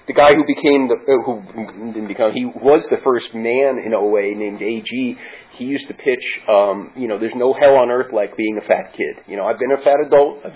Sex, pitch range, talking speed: male, 125-165 Hz, 245 wpm